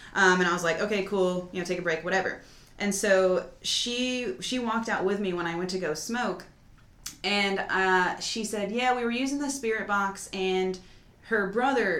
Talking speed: 205 wpm